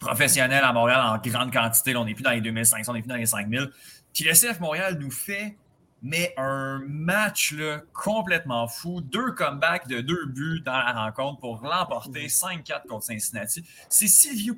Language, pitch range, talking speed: French, 120-170 Hz, 190 wpm